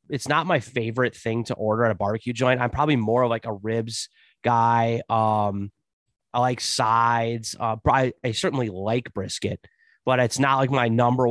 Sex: male